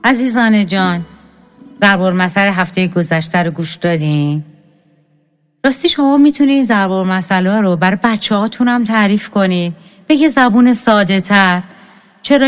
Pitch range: 175-240 Hz